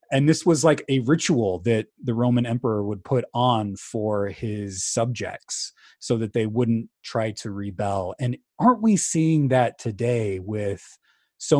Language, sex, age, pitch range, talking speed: English, male, 20-39, 100-130 Hz, 160 wpm